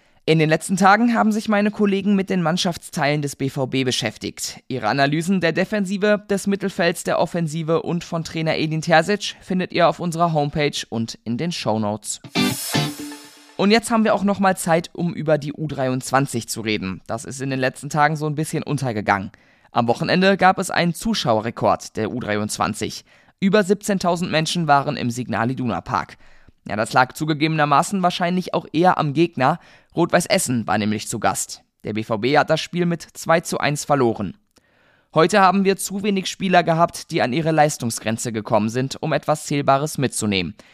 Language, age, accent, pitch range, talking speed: German, 20-39, German, 125-180 Hz, 170 wpm